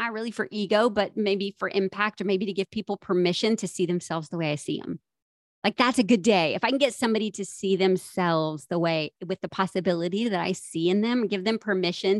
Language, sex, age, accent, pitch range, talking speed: English, female, 30-49, American, 185-230 Hz, 235 wpm